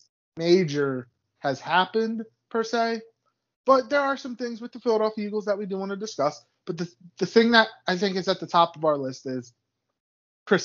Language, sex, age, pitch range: English, male, 20-39, 135-195 Hz